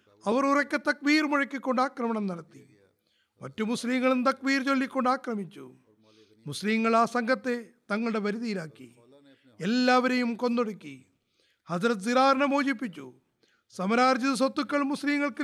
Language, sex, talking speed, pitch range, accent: Malayalam, male, 95 wpm, 170-275 Hz, native